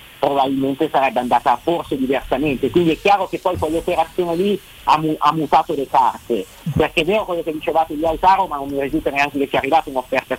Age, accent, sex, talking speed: 50-69, native, male, 210 wpm